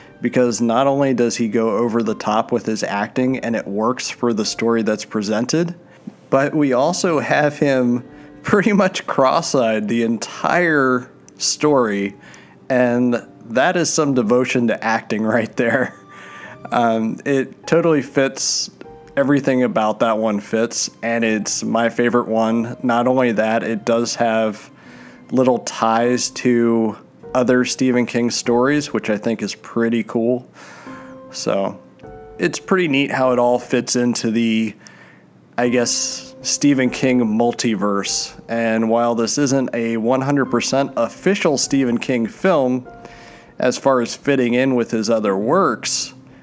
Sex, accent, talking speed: male, American, 140 wpm